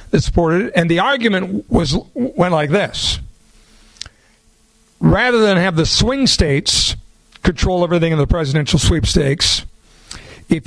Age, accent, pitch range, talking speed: 50-69, American, 155-190 Hz, 130 wpm